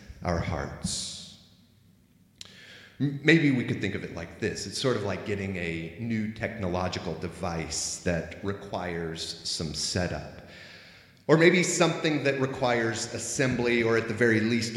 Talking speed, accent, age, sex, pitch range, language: 140 wpm, American, 30-49, male, 95-130 Hz, English